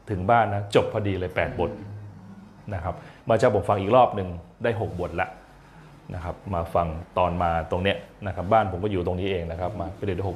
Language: Thai